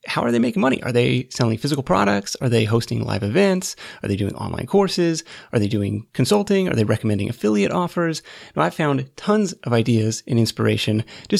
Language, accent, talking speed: English, American, 200 wpm